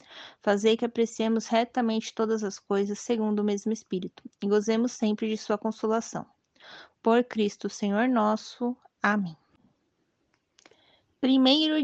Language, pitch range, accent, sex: Portuguese, 205-245 Hz, Brazilian, female